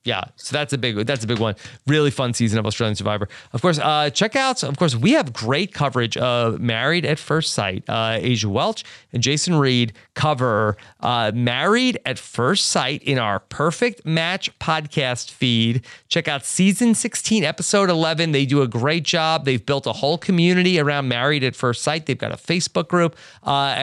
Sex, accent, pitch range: male, American, 120-160 Hz